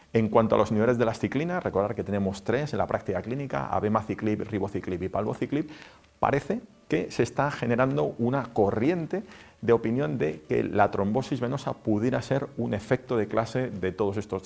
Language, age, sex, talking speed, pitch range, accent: English, 40-59, male, 180 wpm, 100-125 Hz, Spanish